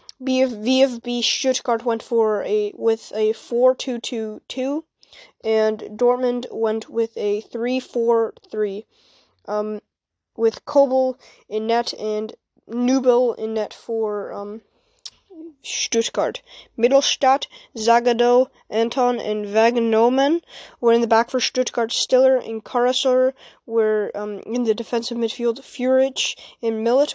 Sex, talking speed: female, 110 wpm